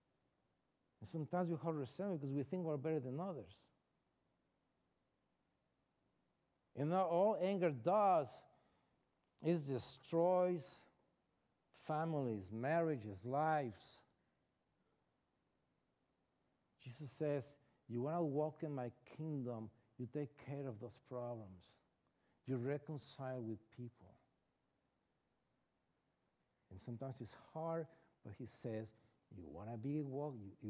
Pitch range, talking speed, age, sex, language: 110-145 Hz, 105 wpm, 60-79, male, English